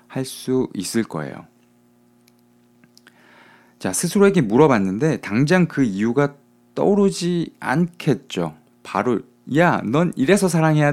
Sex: male